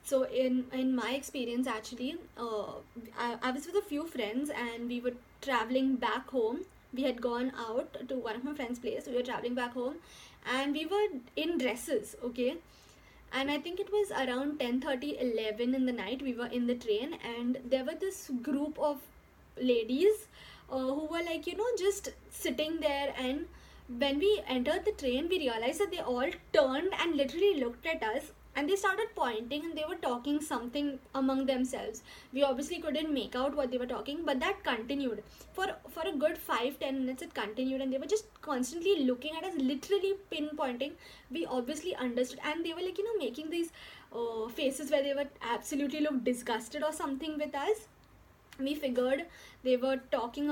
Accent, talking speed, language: Indian, 190 wpm, English